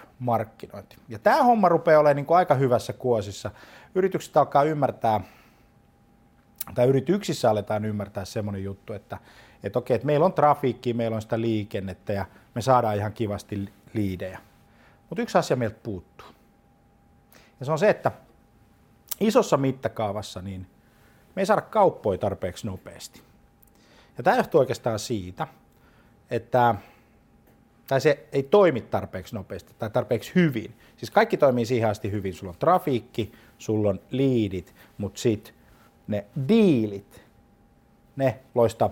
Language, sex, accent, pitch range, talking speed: Finnish, male, native, 105-145 Hz, 135 wpm